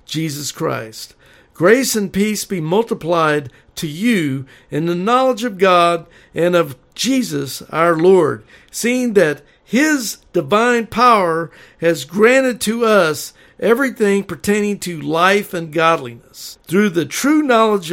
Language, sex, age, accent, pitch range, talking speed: English, male, 60-79, American, 155-215 Hz, 125 wpm